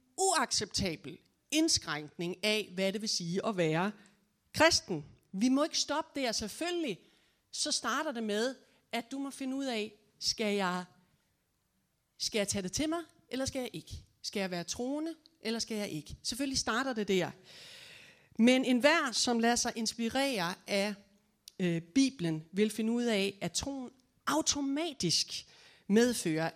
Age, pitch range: 40-59, 180-255 Hz